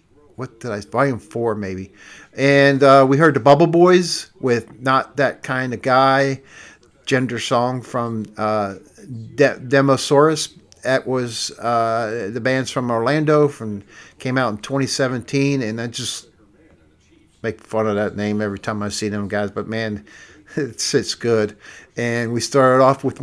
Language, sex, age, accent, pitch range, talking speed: English, male, 50-69, American, 115-140 Hz, 160 wpm